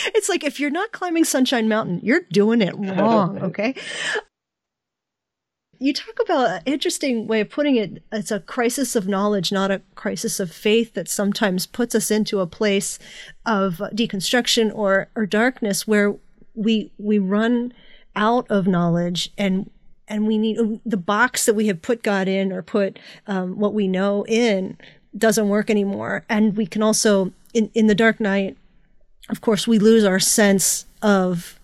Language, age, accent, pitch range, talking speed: English, 40-59, American, 195-225 Hz, 170 wpm